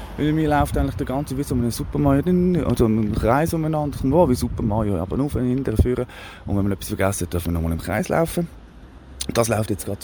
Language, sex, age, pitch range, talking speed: German, male, 30-49, 90-115 Hz, 245 wpm